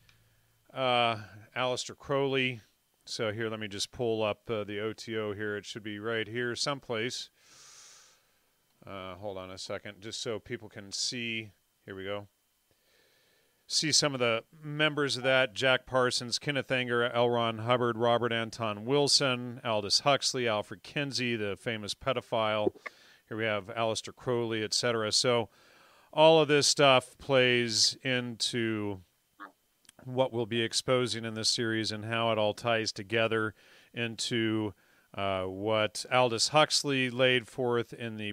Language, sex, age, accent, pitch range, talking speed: English, male, 40-59, American, 105-125 Hz, 140 wpm